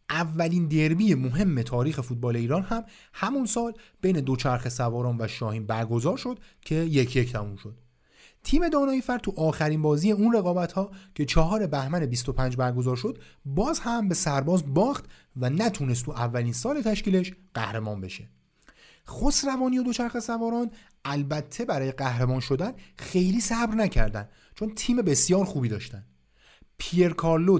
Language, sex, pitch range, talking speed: Persian, male, 120-190 Hz, 145 wpm